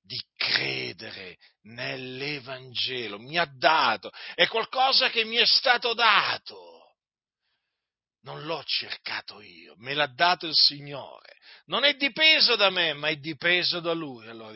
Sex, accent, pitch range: male, native, 130-210 Hz